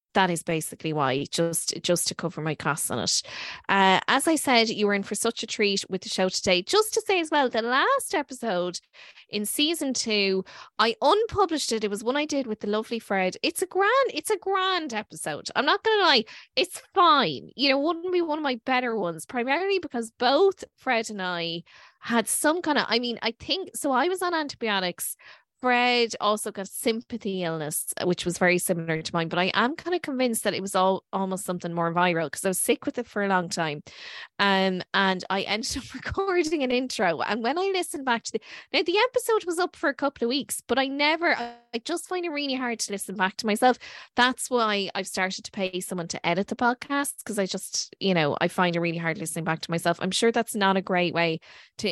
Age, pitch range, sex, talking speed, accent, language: 20-39, 180-275 Hz, female, 230 wpm, Irish, English